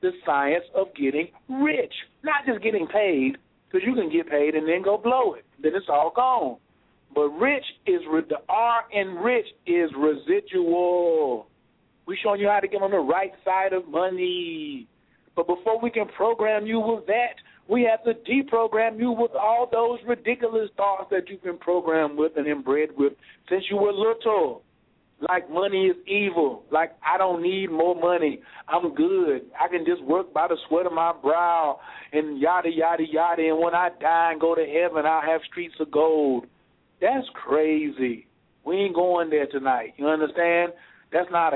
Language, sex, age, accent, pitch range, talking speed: English, male, 50-69, American, 160-235 Hz, 180 wpm